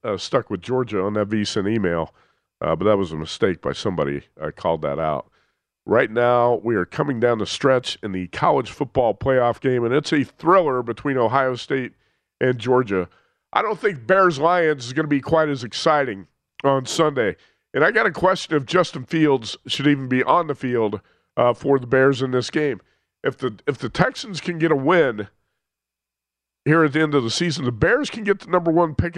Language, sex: English, male